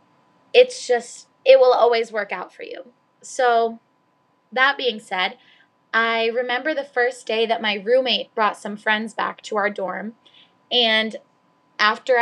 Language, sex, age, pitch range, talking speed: English, female, 10-29, 215-250 Hz, 145 wpm